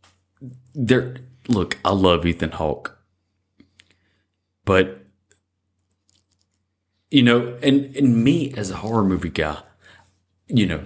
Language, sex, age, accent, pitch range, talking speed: English, male, 30-49, American, 90-115 Hz, 105 wpm